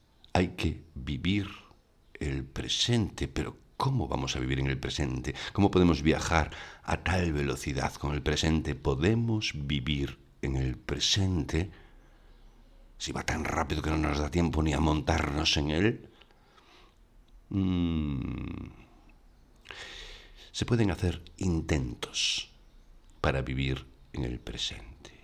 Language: Spanish